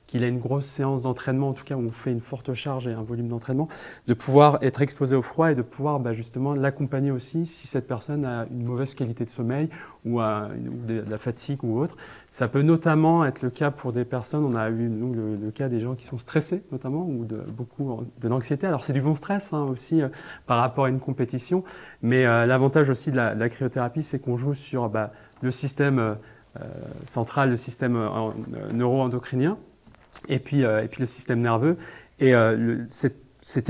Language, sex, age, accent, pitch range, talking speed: French, male, 30-49, French, 120-145 Hz, 225 wpm